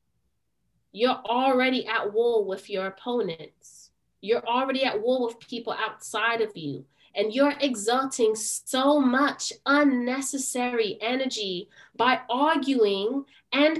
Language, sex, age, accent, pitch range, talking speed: English, female, 20-39, American, 210-270 Hz, 115 wpm